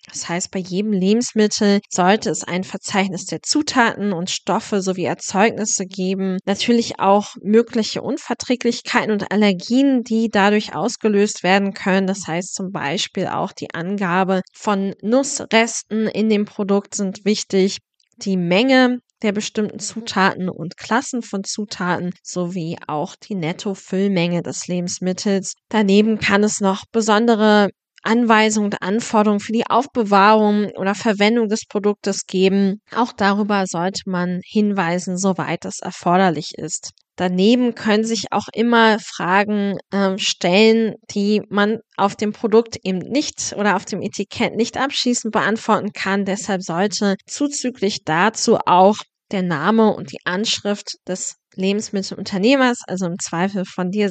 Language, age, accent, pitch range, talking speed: German, 20-39, German, 185-220 Hz, 135 wpm